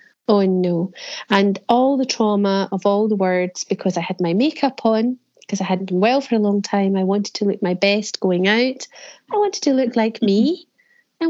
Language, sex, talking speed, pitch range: English, female, 210 wpm, 195-245 Hz